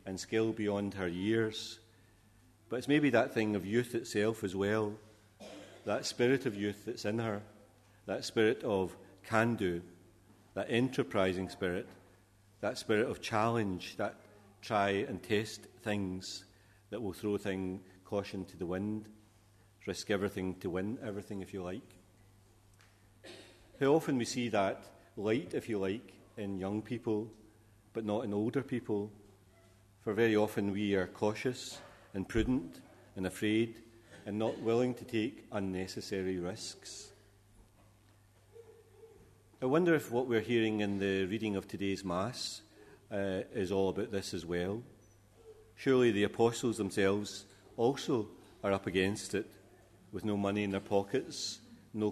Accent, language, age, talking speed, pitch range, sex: British, English, 40-59, 140 wpm, 95-110 Hz, male